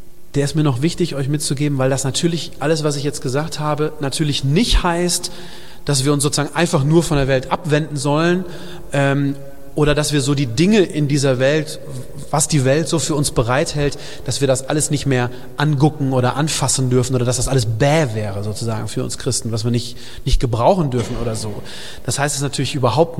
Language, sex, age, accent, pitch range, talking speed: German, male, 30-49, German, 130-160 Hz, 205 wpm